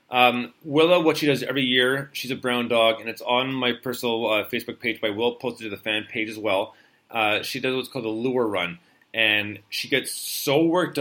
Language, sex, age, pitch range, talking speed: English, male, 30-49, 115-140 Hz, 225 wpm